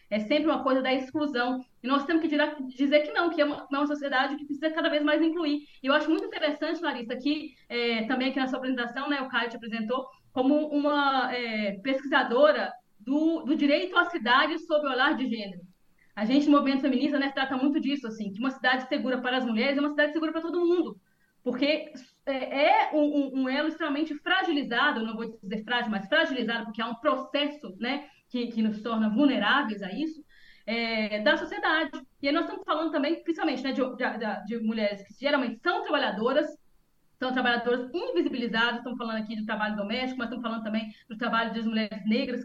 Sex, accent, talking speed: female, Brazilian, 200 wpm